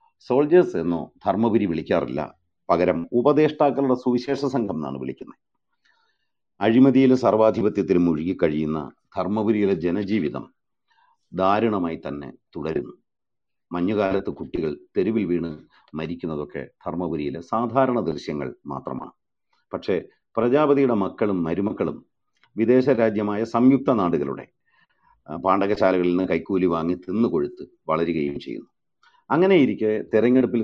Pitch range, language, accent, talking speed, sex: 95-130 Hz, Malayalam, native, 90 wpm, male